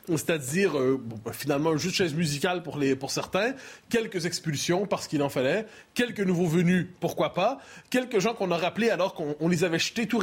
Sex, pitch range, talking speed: male, 145-200 Hz, 180 wpm